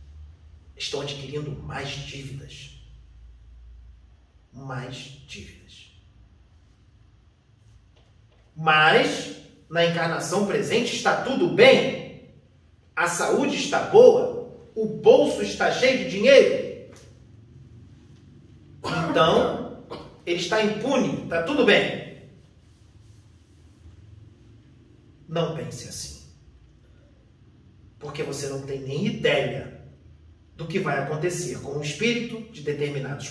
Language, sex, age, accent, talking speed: Portuguese, male, 40-59, Brazilian, 85 wpm